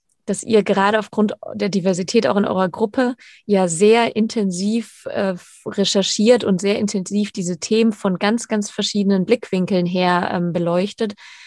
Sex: female